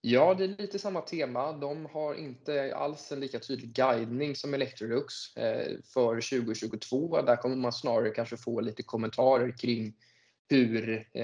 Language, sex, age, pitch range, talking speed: Swedish, male, 20-39, 115-125 Hz, 150 wpm